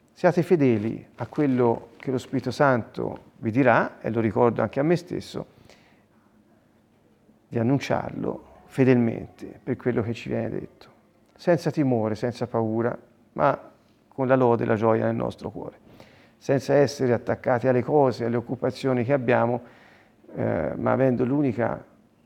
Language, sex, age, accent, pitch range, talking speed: Italian, male, 40-59, native, 115-140 Hz, 145 wpm